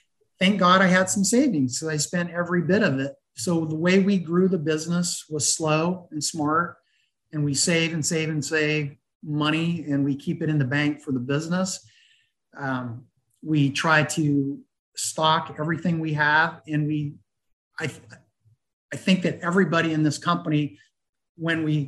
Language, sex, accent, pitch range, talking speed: English, male, American, 150-185 Hz, 170 wpm